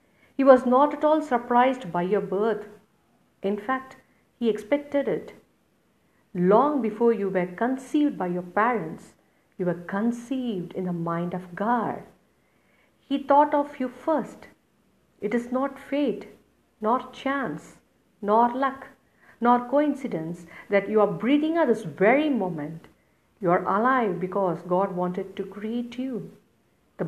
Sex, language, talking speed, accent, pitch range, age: female, English, 140 wpm, Indian, 185-265 Hz, 50-69